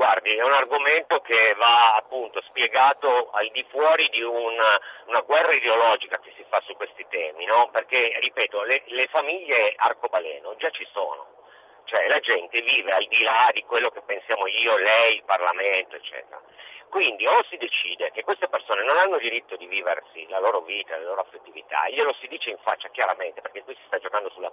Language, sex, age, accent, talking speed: Italian, male, 50-69, native, 195 wpm